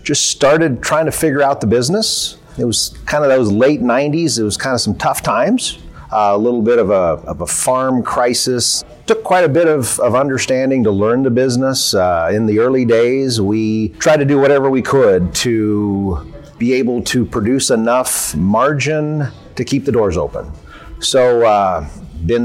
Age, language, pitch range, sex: 40-59, English, 105-135 Hz, male